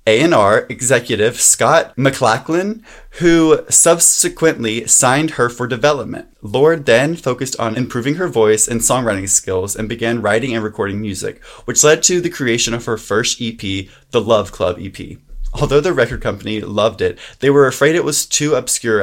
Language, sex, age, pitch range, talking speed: English, male, 20-39, 110-145 Hz, 165 wpm